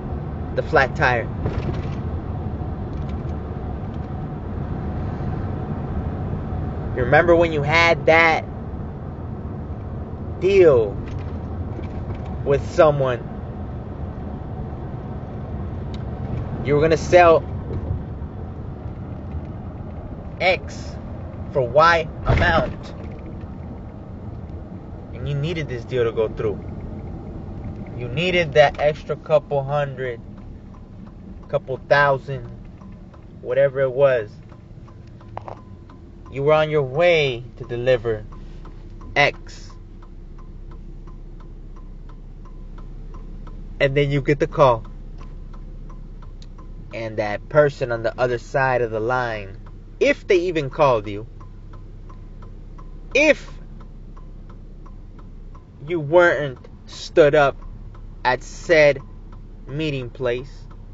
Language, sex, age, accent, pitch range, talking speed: English, male, 20-39, American, 100-140 Hz, 75 wpm